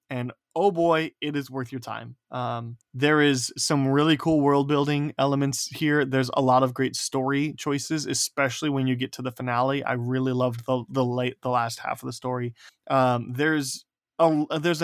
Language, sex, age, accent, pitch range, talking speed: English, male, 20-39, American, 120-140 Hz, 190 wpm